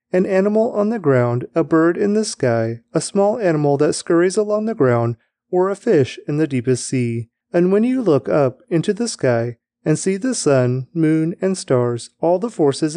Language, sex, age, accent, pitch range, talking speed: English, male, 30-49, American, 125-175 Hz, 200 wpm